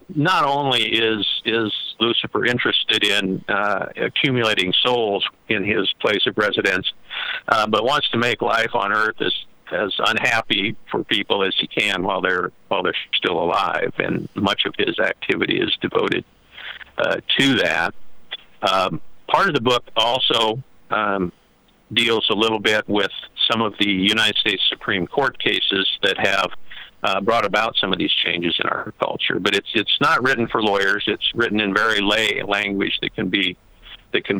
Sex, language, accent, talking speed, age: male, English, American, 170 wpm, 50-69